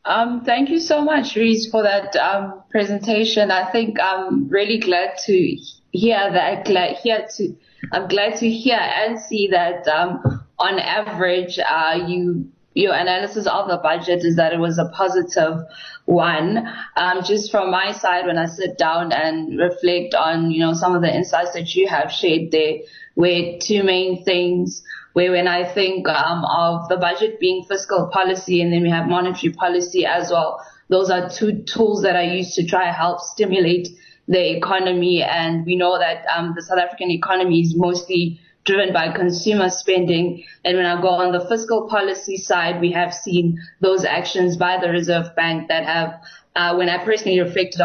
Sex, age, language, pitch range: female, 20-39, English, 170-195 Hz